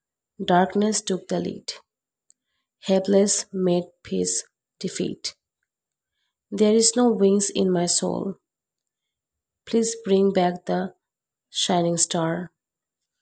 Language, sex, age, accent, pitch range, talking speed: English, female, 30-49, Indian, 175-200 Hz, 95 wpm